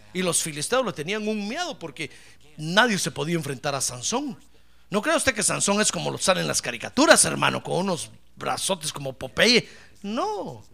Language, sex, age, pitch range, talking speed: Spanish, male, 50-69, 185-305 Hz, 185 wpm